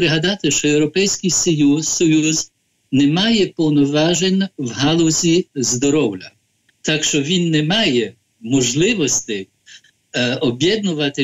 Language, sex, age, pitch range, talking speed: Ukrainian, male, 60-79, 135-180 Hz, 100 wpm